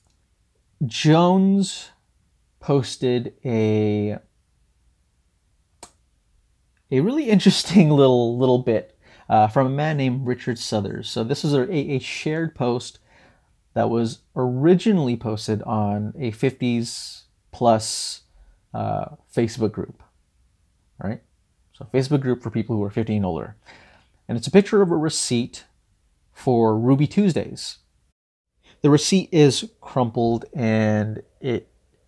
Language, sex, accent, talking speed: English, male, American, 115 wpm